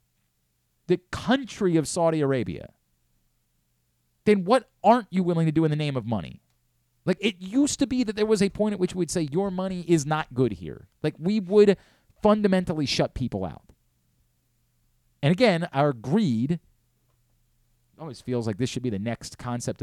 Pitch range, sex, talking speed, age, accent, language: 110-150 Hz, male, 175 wpm, 30-49, American, English